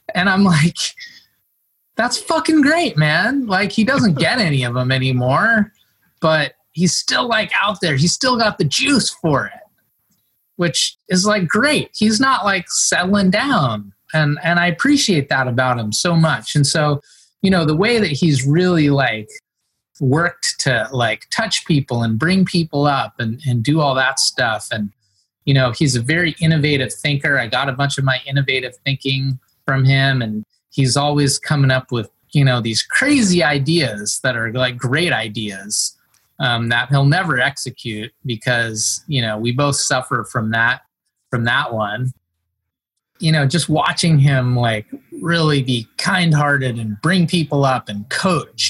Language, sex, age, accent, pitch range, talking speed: English, male, 30-49, American, 125-175 Hz, 170 wpm